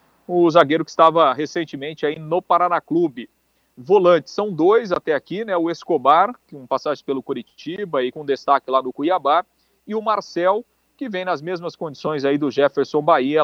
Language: Portuguese